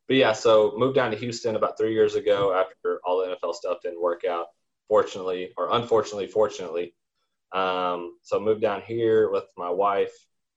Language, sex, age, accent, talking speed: English, male, 20-39, American, 175 wpm